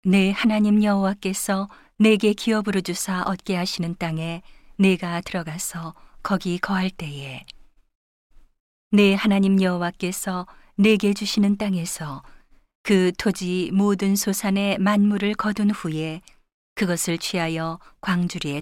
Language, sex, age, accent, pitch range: Korean, female, 40-59, native, 170-200 Hz